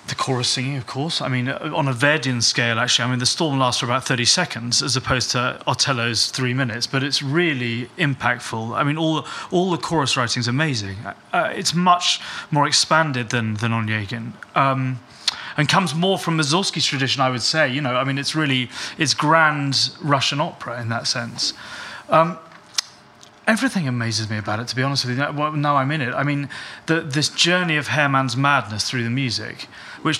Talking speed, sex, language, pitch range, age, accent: 200 wpm, male, English, 125-155 Hz, 30-49, British